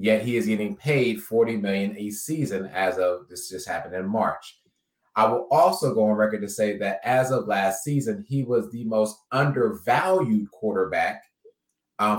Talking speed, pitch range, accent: 175 wpm, 105-130 Hz, American